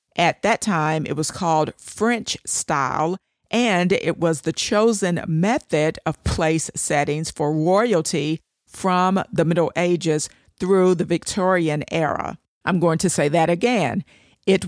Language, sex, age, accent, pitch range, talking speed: English, female, 50-69, American, 160-195 Hz, 140 wpm